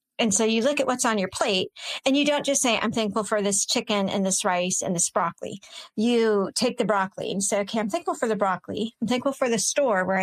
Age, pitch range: 40-59, 205-255 Hz